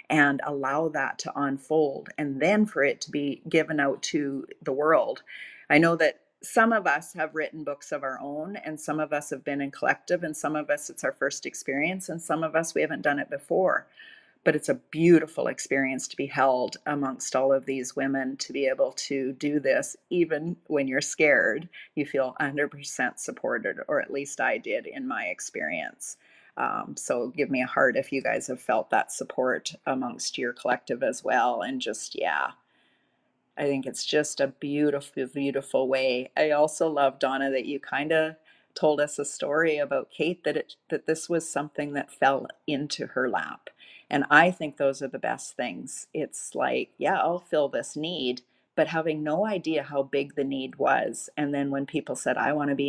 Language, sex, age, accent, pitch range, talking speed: English, female, 40-59, American, 140-155 Hz, 200 wpm